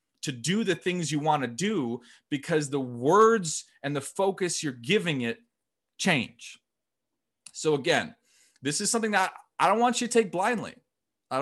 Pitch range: 115-170 Hz